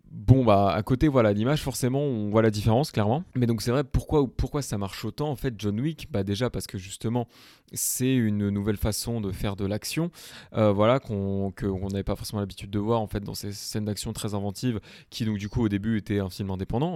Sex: male